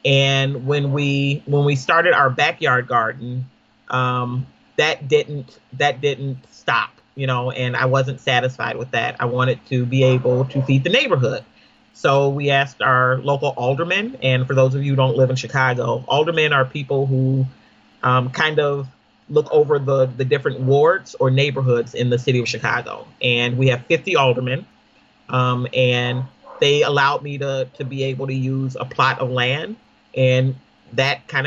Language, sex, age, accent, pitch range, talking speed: English, male, 40-59, American, 125-140 Hz, 175 wpm